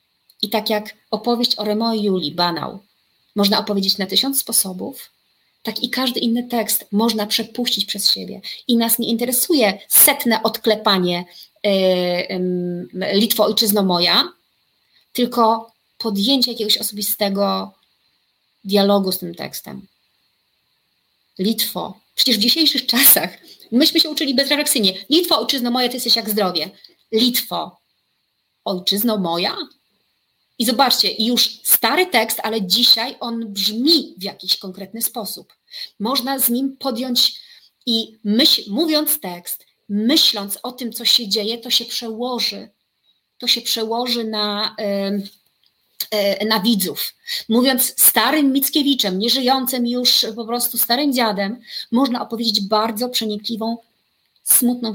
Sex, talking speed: female, 125 wpm